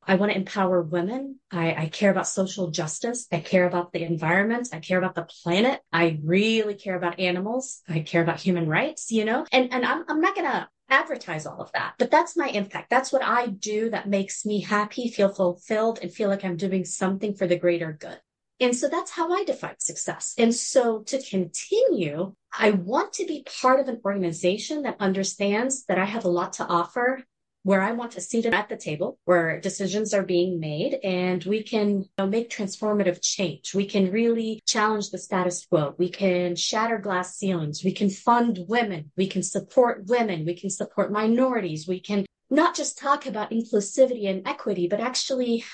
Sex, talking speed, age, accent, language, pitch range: female, 200 wpm, 30-49, American, English, 180-245 Hz